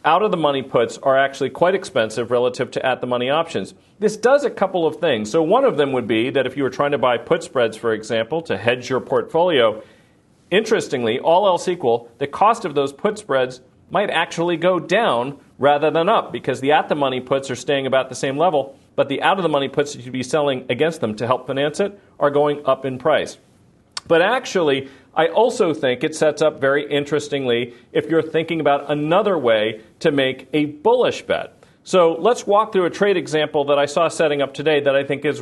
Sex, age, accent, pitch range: male, 40-59, American, 130-170 Hz